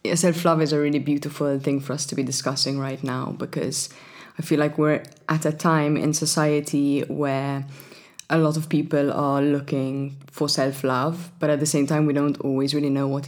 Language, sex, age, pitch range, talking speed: English, female, 20-39, 140-160 Hz, 195 wpm